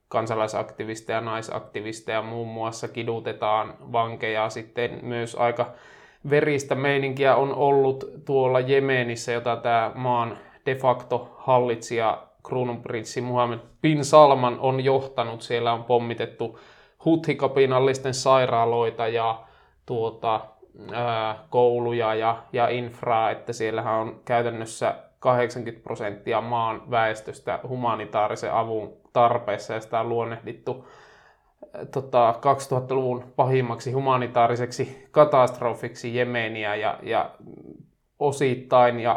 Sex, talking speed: male, 95 wpm